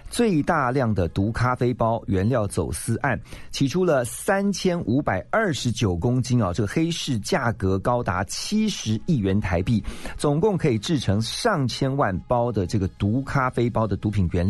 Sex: male